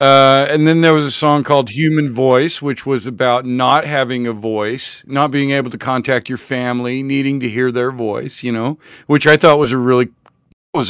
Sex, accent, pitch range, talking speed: male, American, 115-150 Hz, 210 wpm